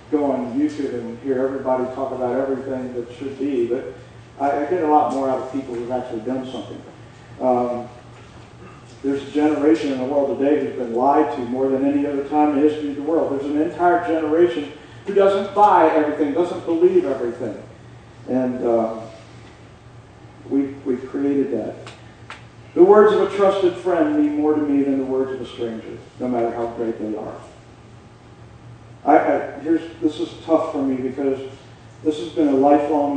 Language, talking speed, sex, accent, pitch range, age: English, 185 wpm, male, American, 120-150 Hz, 50-69